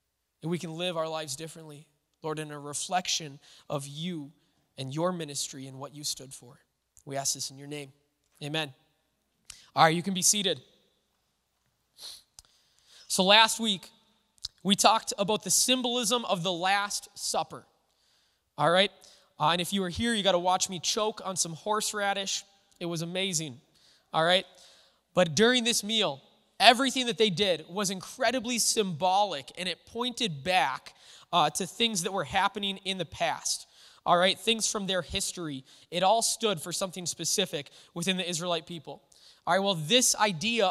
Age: 20-39